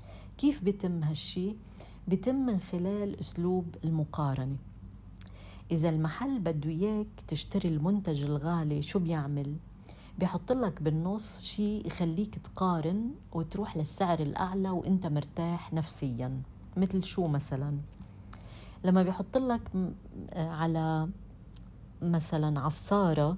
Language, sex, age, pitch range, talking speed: Arabic, female, 40-59, 145-190 Hz, 100 wpm